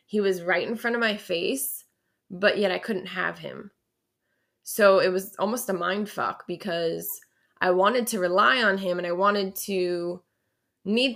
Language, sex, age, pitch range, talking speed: English, female, 20-39, 180-210 Hz, 175 wpm